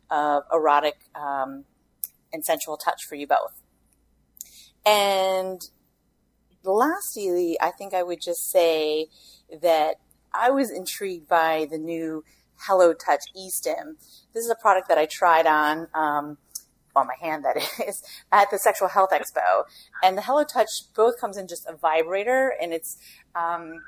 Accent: American